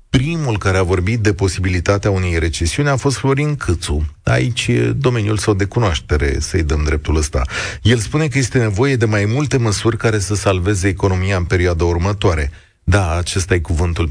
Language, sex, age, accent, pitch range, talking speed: Romanian, male, 30-49, native, 90-115 Hz, 180 wpm